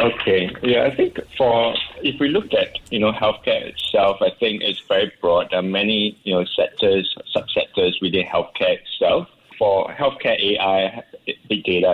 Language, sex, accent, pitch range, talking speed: English, male, Malaysian, 95-110 Hz, 165 wpm